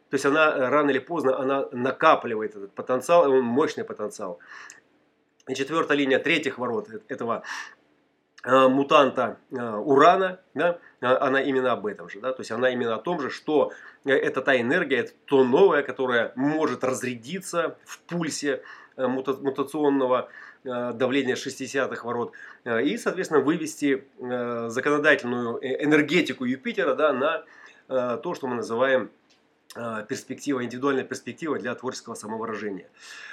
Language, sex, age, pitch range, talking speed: Russian, male, 30-49, 125-145 Hz, 125 wpm